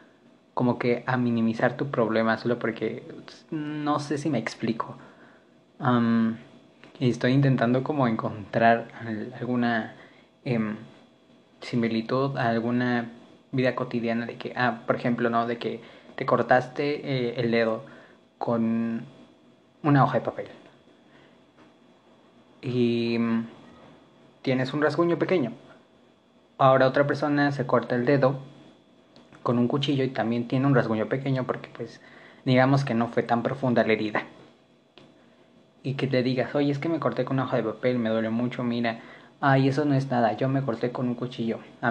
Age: 20-39